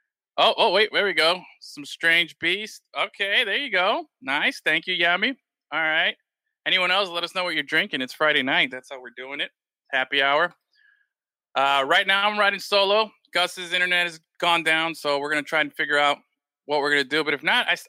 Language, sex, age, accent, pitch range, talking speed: English, male, 20-39, American, 135-180 Hz, 220 wpm